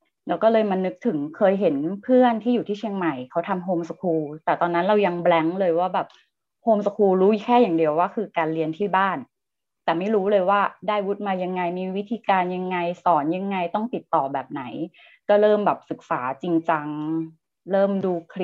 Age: 20-39